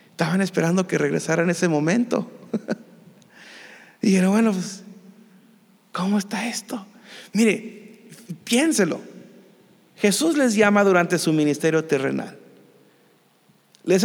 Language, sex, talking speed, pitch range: Spanish, male, 100 wpm, 185-245 Hz